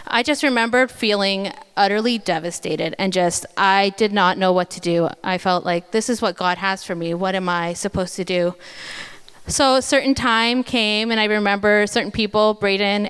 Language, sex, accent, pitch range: Japanese, female, American, 195-265 Hz